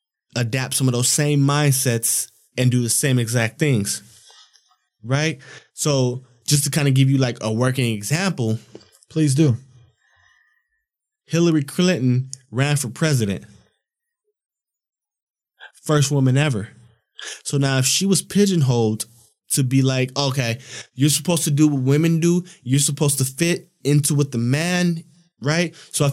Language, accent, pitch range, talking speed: English, American, 130-170 Hz, 140 wpm